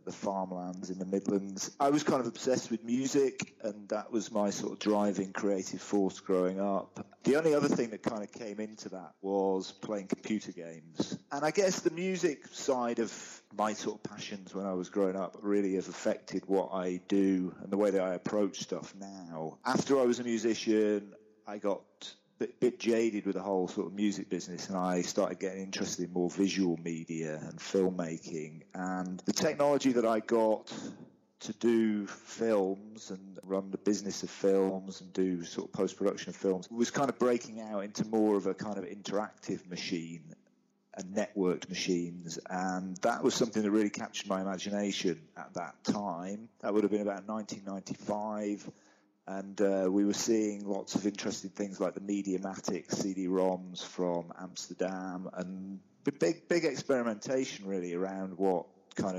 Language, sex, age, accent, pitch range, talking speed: English, male, 40-59, British, 95-110 Hz, 175 wpm